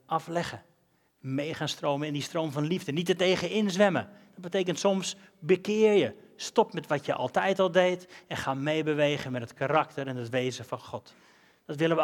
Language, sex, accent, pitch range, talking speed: Dutch, male, Dutch, 135-175 Hz, 195 wpm